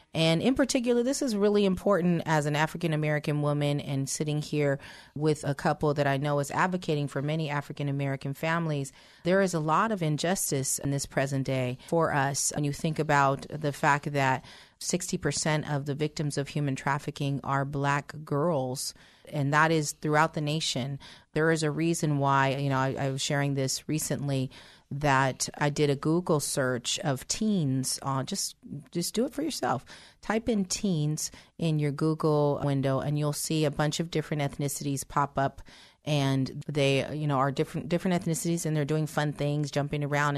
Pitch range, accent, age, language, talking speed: 140-160 Hz, American, 30-49, English, 180 wpm